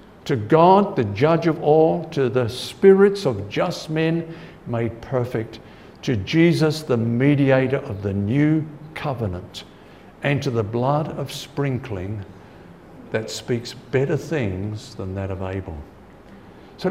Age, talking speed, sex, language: 60-79, 130 wpm, male, English